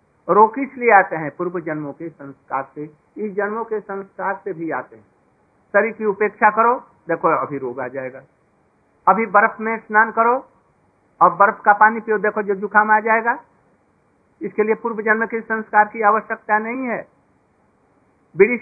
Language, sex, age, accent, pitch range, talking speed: Hindi, male, 60-79, native, 195-225 Hz, 170 wpm